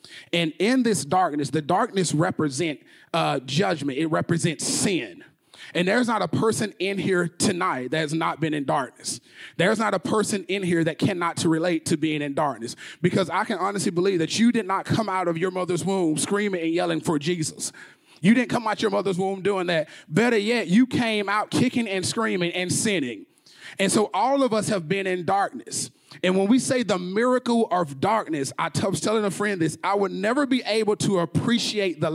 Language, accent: English, American